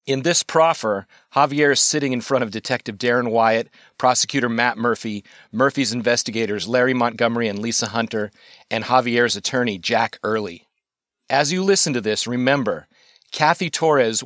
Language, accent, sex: English, American, male